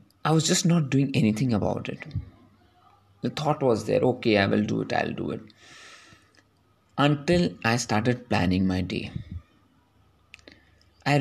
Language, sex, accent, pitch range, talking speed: English, male, Indian, 105-150 Hz, 145 wpm